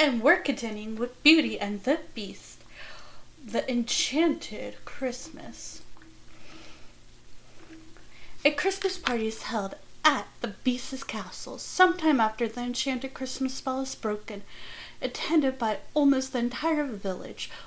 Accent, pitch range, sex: American, 220-290 Hz, female